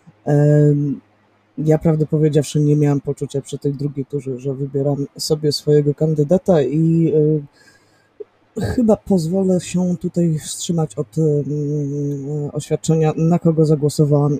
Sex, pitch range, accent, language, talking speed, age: female, 140-155 Hz, native, Polish, 110 wpm, 20-39